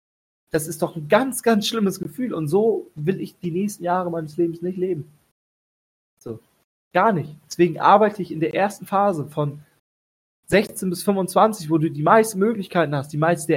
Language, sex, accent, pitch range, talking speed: German, male, German, 155-195 Hz, 180 wpm